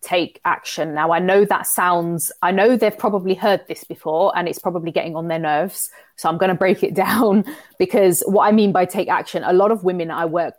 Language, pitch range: English, 165-190 Hz